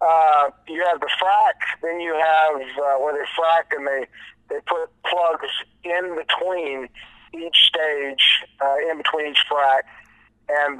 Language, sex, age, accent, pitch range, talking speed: English, male, 50-69, American, 125-155 Hz, 150 wpm